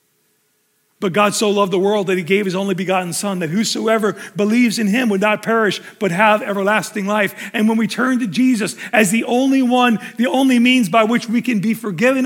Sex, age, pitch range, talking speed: male, 40-59, 160-230 Hz, 215 wpm